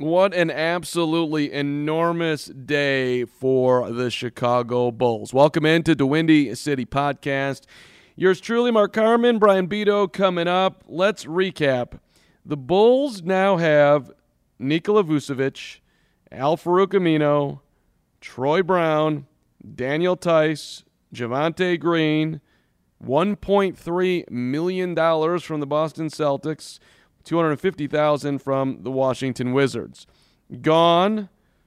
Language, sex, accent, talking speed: English, male, American, 100 wpm